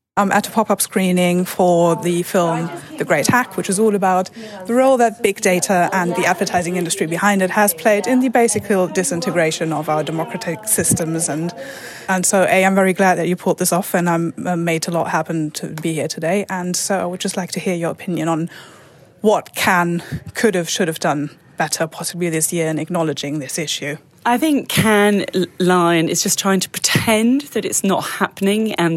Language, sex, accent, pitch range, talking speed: English, female, British, 155-190 Hz, 200 wpm